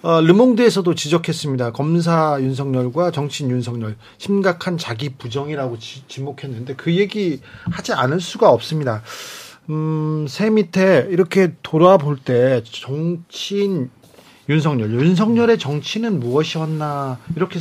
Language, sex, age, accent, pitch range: Korean, male, 40-59, native, 135-190 Hz